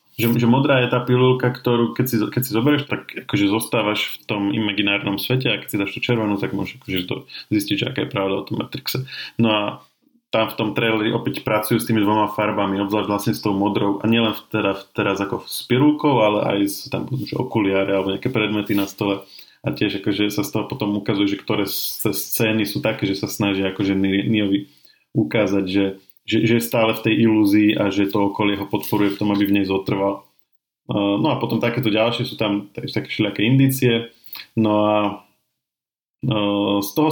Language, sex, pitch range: Slovak, male, 100-115 Hz